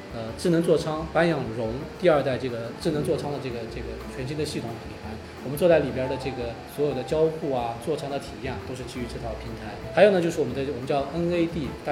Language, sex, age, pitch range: Chinese, male, 20-39, 120-165 Hz